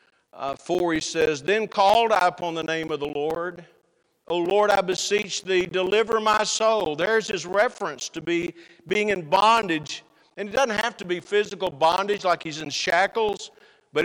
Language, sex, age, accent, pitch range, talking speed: English, male, 60-79, American, 175-215 Hz, 180 wpm